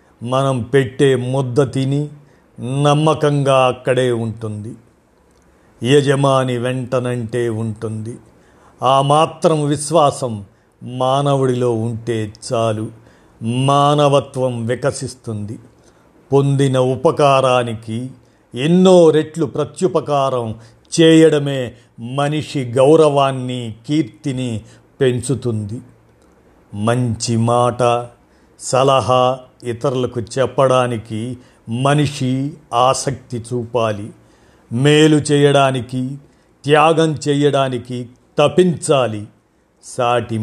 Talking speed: 60 wpm